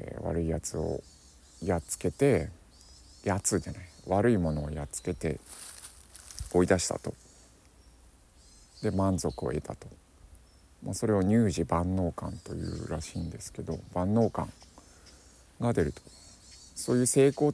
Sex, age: male, 50-69